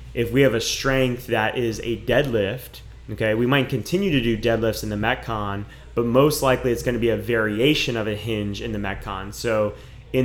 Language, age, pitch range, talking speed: English, 20-39, 110-130 Hz, 205 wpm